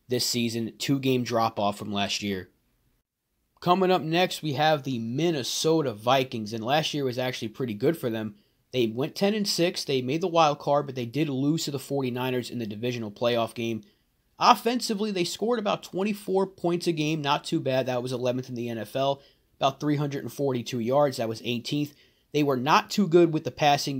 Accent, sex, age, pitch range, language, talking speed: American, male, 30-49, 115-145 Hz, English, 200 wpm